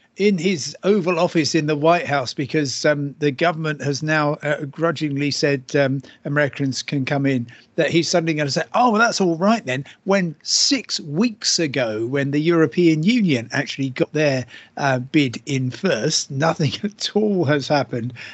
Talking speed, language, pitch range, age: 175 wpm, English, 135-175 Hz, 50-69